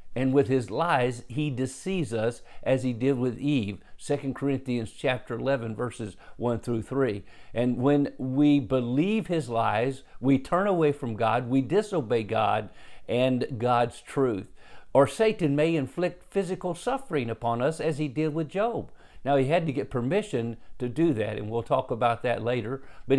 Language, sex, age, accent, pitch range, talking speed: English, male, 50-69, American, 120-150 Hz, 170 wpm